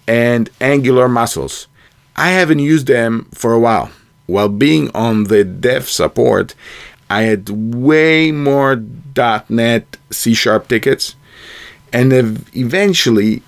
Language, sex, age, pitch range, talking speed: English, male, 50-69, 115-155 Hz, 110 wpm